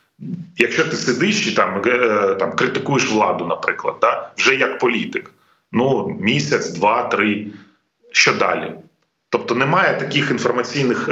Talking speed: 130 wpm